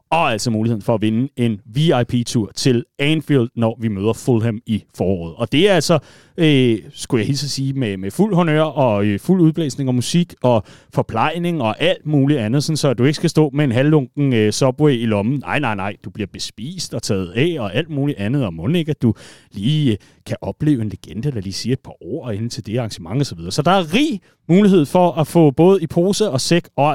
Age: 30-49